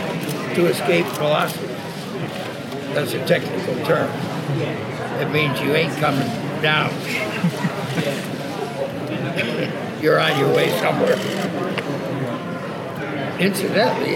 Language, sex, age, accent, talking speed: English, male, 60-79, American, 80 wpm